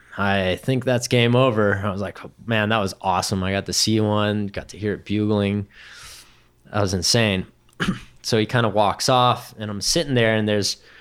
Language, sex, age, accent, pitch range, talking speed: English, male, 20-39, American, 100-120 Hz, 200 wpm